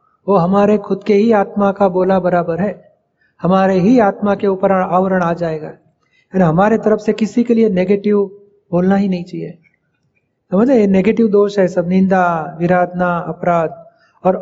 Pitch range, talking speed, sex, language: 185-230 Hz, 165 wpm, male, Hindi